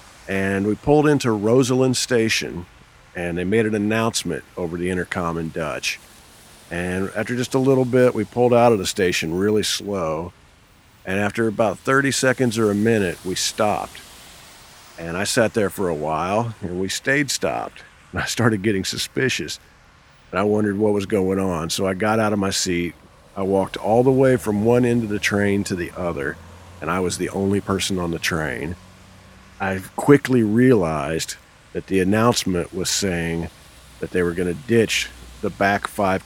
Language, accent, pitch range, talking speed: English, American, 90-110 Hz, 180 wpm